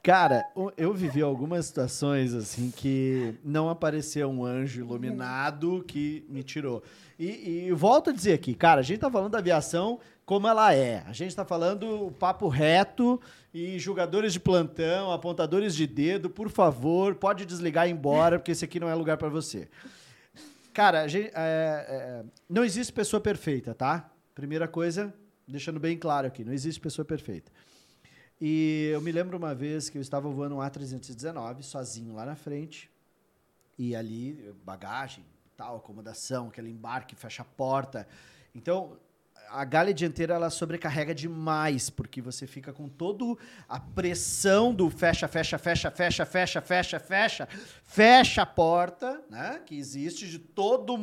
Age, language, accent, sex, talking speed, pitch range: 40-59, Portuguese, Brazilian, male, 160 wpm, 135-180 Hz